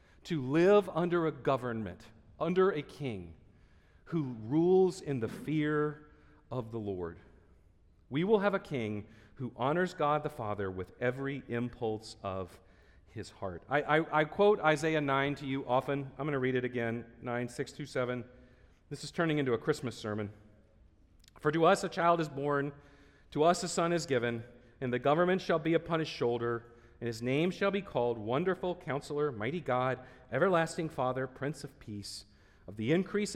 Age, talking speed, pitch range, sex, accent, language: 40-59, 175 wpm, 105-150 Hz, male, American, English